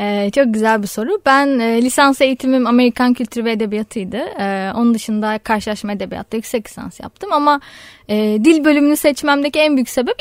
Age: 10-29